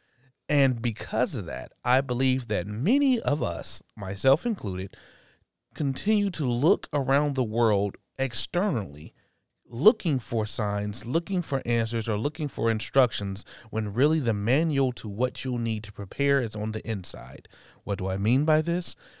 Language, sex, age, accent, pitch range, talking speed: English, male, 30-49, American, 105-135 Hz, 155 wpm